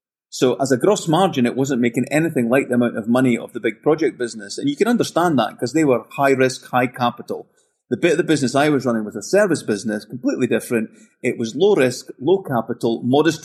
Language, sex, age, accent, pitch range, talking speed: English, male, 30-49, British, 115-145 Hz, 230 wpm